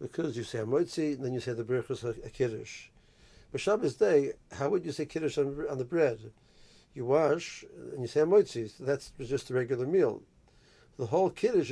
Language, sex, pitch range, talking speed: English, male, 125-155 Hz, 200 wpm